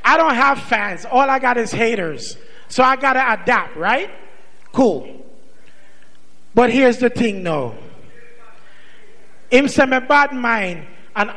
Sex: male